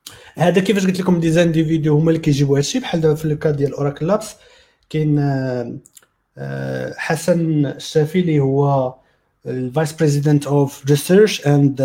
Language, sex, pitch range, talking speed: Arabic, male, 130-165 Hz, 135 wpm